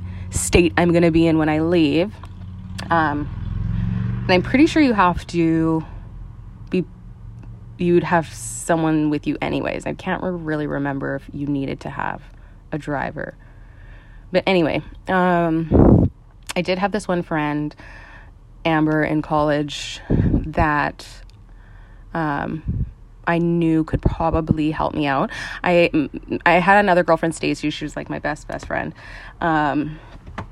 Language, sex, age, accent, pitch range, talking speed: English, female, 20-39, American, 110-175 Hz, 140 wpm